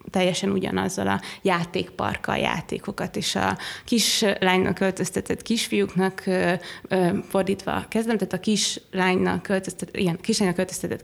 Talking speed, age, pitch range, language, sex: 105 wpm, 20-39, 190-205 Hz, Hungarian, female